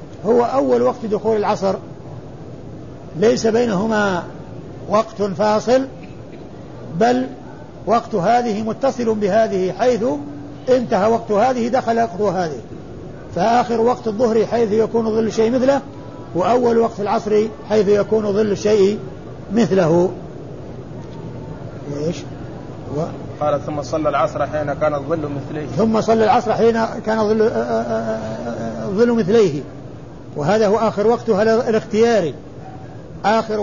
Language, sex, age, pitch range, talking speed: Arabic, male, 50-69, 155-225 Hz, 100 wpm